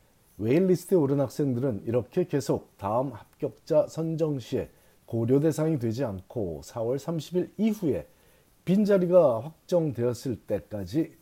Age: 40-59